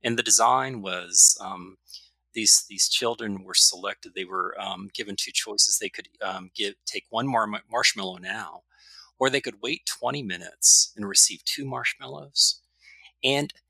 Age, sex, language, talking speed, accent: 30-49, male, English, 160 wpm, American